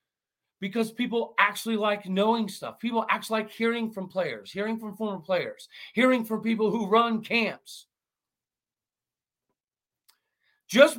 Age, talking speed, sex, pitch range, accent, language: 40-59, 125 wpm, male, 175-230 Hz, American, English